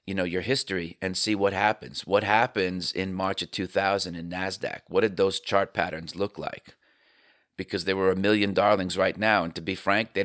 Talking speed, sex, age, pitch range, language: 210 wpm, male, 40-59, 90-105 Hz, English